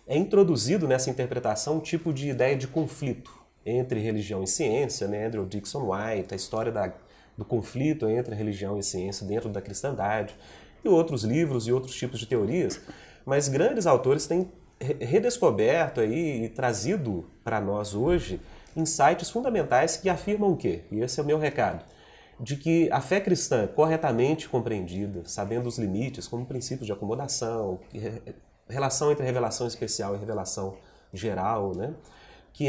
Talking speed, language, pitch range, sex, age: 160 wpm, Portuguese, 105-155 Hz, male, 30-49